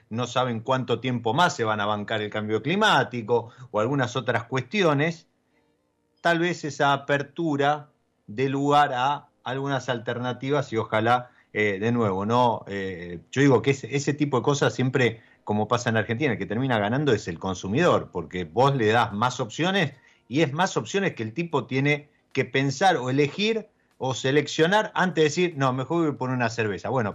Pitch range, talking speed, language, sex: 105-145 Hz, 185 wpm, Spanish, male